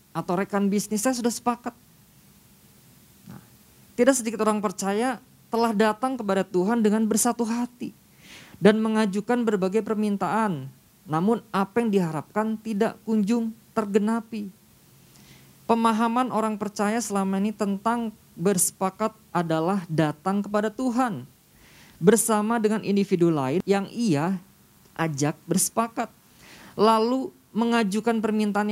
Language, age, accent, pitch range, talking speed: Indonesian, 20-39, native, 195-225 Hz, 105 wpm